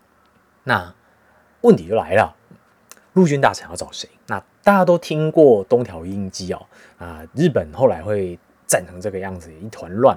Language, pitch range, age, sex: Chinese, 95-150 Hz, 30-49, male